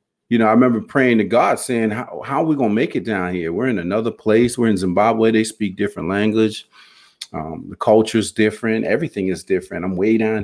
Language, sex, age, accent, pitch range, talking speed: English, male, 40-59, American, 110-140 Hz, 230 wpm